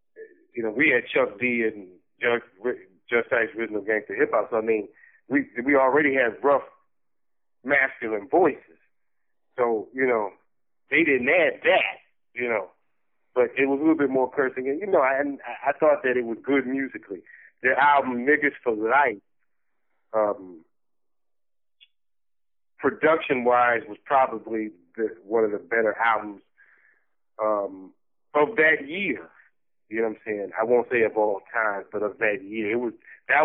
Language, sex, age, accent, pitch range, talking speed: English, male, 30-49, American, 110-155 Hz, 160 wpm